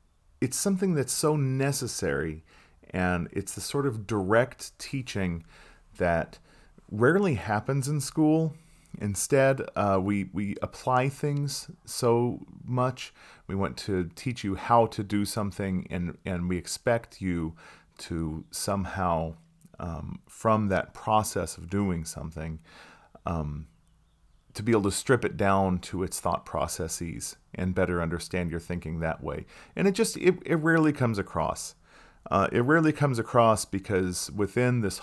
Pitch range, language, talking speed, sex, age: 90-125 Hz, English, 140 wpm, male, 40-59